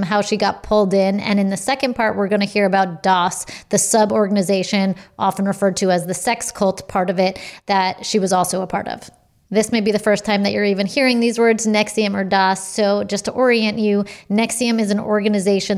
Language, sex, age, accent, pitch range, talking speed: English, female, 30-49, American, 195-215 Hz, 230 wpm